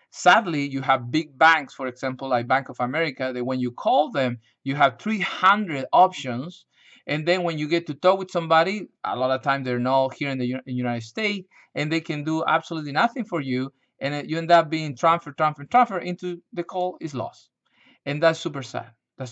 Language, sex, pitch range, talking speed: English, male, 145-205 Hz, 205 wpm